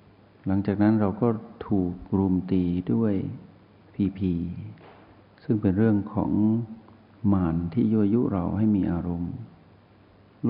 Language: Thai